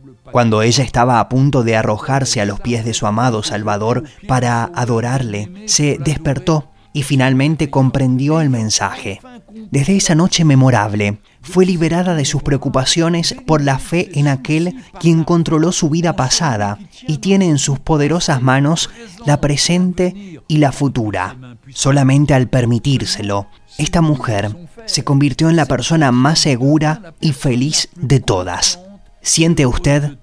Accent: Argentinian